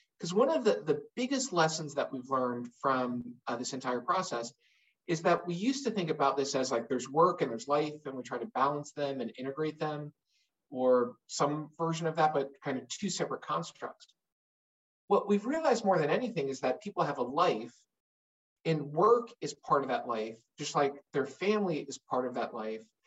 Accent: American